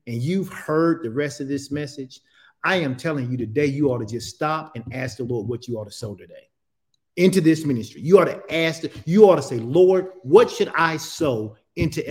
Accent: American